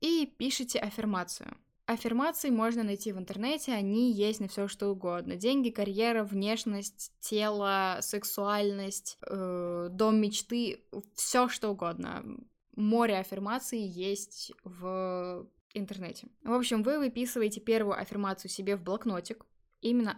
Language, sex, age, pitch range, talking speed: Russian, female, 10-29, 200-245 Hz, 120 wpm